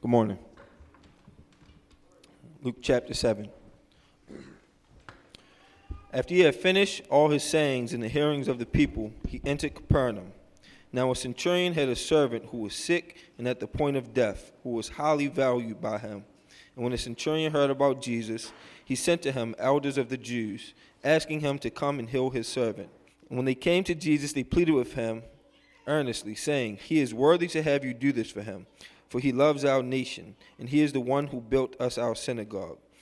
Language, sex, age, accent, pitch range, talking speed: English, male, 20-39, American, 120-145 Hz, 185 wpm